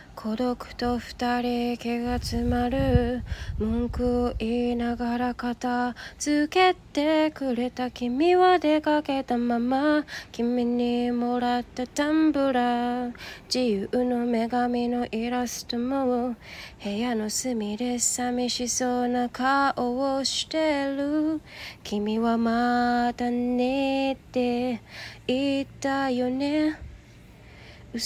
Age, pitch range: 20-39, 245-310 Hz